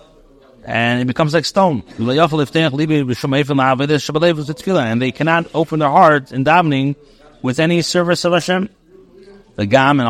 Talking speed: 125 wpm